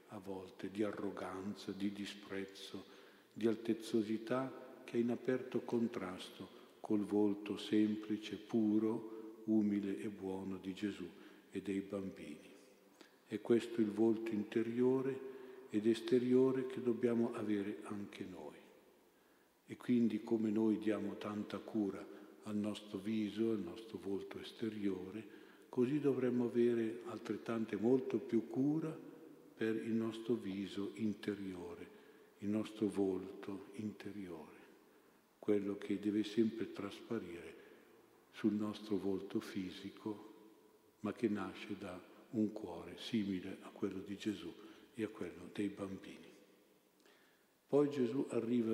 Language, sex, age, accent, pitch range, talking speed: Italian, male, 50-69, native, 100-115 Hz, 120 wpm